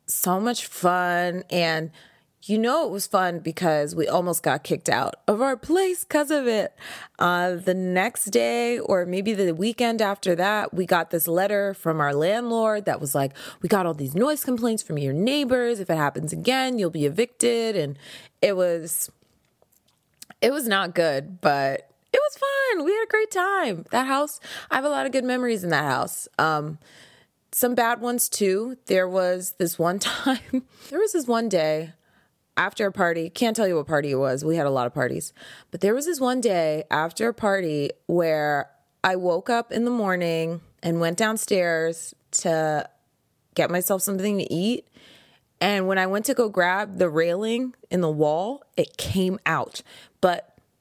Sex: female